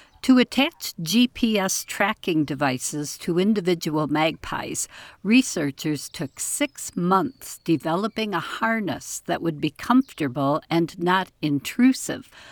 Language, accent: English, American